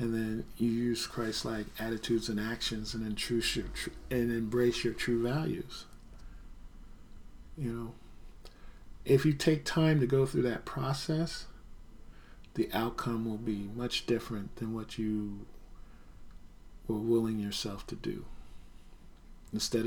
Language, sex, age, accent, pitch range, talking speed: English, male, 50-69, American, 85-120 Hz, 125 wpm